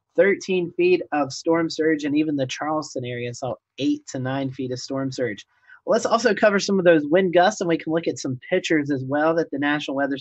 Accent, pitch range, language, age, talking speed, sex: American, 135-175 Hz, English, 30-49, 235 wpm, male